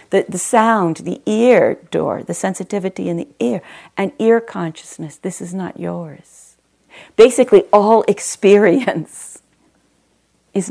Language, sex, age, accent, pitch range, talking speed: English, female, 50-69, American, 170-220 Hz, 125 wpm